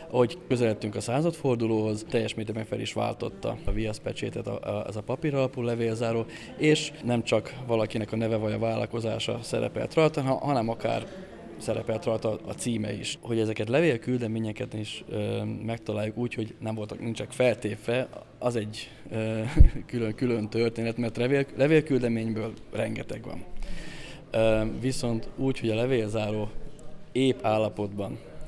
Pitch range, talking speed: 110-130 Hz, 135 wpm